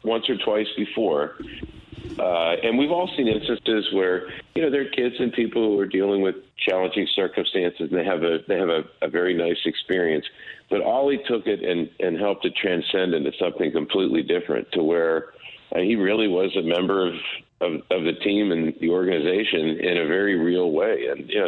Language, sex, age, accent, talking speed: English, male, 50-69, American, 200 wpm